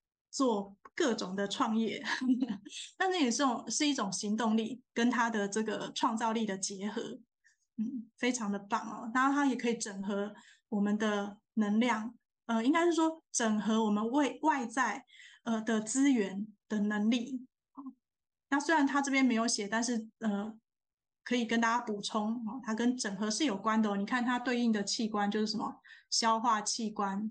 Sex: female